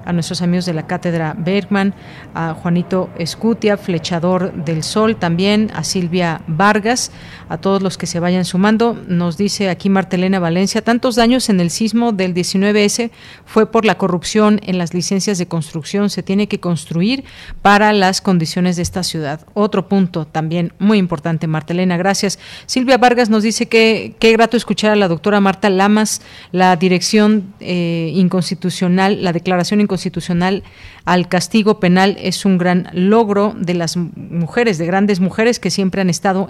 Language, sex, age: Spanish, female, 40-59